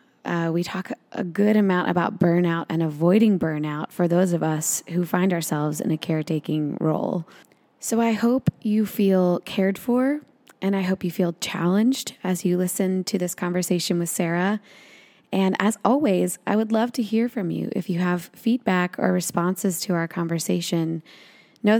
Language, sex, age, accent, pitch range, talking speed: English, female, 20-39, American, 175-215 Hz, 175 wpm